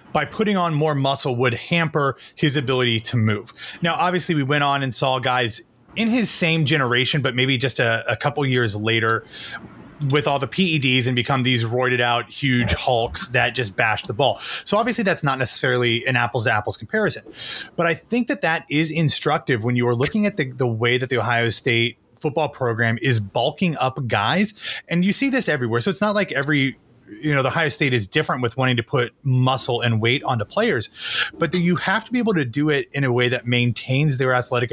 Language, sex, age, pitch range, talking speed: English, male, 30-49, 120-155 Hz, 215 wpm